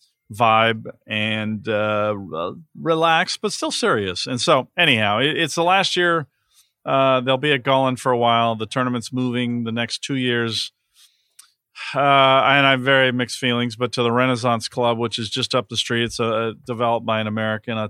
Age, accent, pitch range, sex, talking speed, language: 40-59, American, 110-130 Hz, male, 190 wpm, English